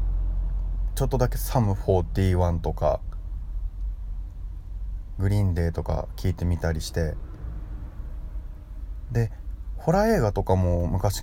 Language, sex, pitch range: Japanese, male, 80-105 Hz